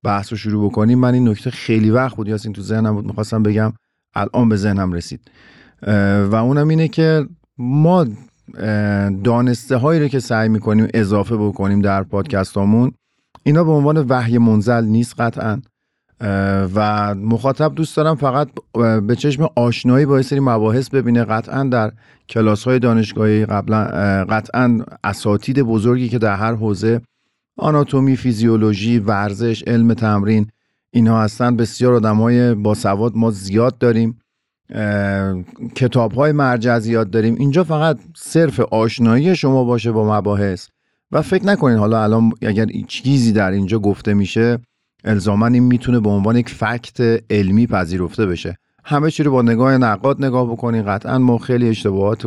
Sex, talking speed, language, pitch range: male, 150 wpm, Persian, 105-125 Hz